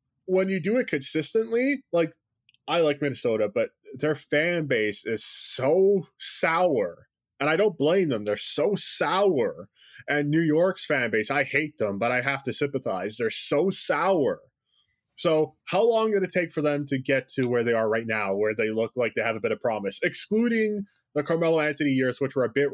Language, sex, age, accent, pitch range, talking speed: English, male, 20-39, American, 125-175 Hz, 200 wpm